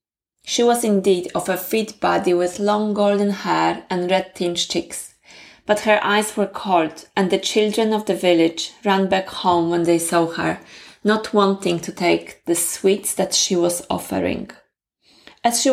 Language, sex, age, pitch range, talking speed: English, female, 20-39, 175-210 Hz, 170 wpm